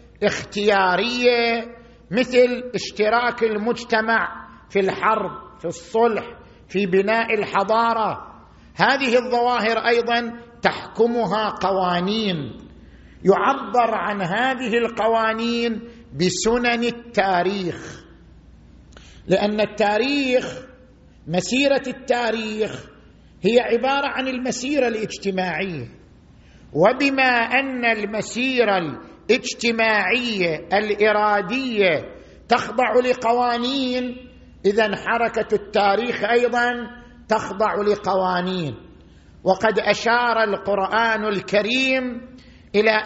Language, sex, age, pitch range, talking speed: Arabic, male, 50-69, 200-240 Hz, 70 wpm